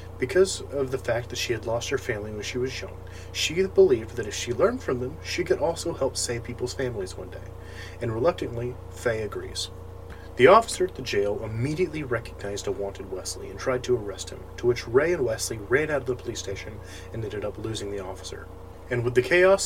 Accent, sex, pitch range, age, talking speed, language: American, male, 95-125 Hz, 30-49, 215 wpm, English